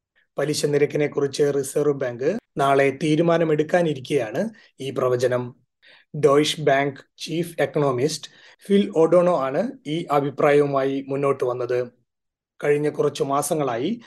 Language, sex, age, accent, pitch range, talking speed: Malayalam, male, 30-49, native, 140-170 Hz, 100 wpm